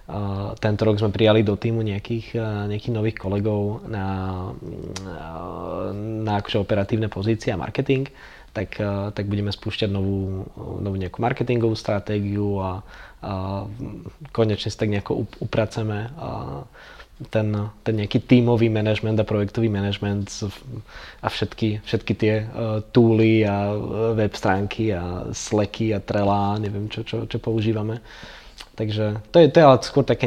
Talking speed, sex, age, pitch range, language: 120 wpm, male, 20-39, 100-115 Hz, Czech